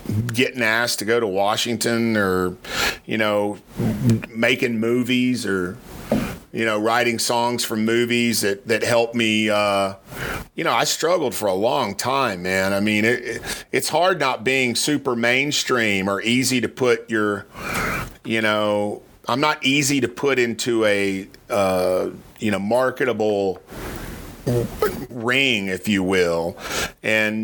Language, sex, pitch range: English, male, 100-120 Hz